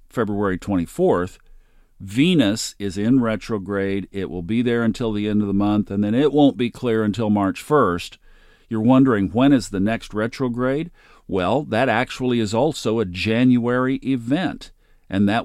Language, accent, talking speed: English, American, 165 wpm